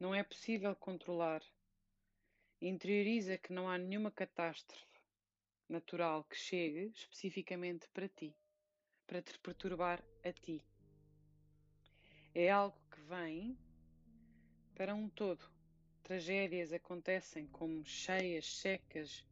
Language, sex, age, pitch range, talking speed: Portuguese, female, 20-39, 130-190 Hz, 105 wpm